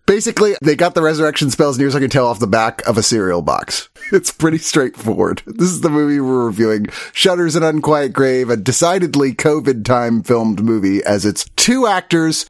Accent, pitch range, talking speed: American, 110-160 Hz, 195 wpm